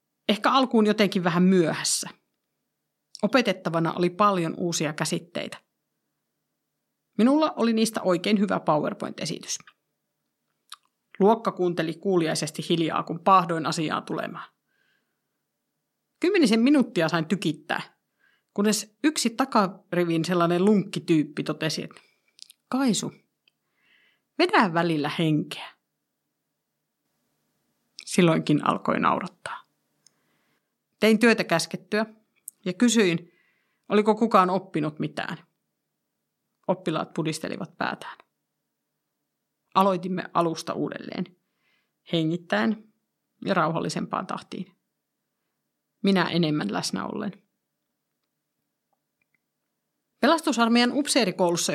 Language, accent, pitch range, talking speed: Finnish, native, 165-215 Hz, 80 wpm